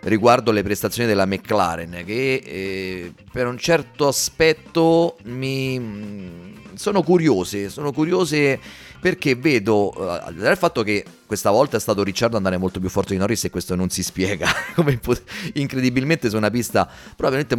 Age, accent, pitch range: 30-49, native, 100-135 Hz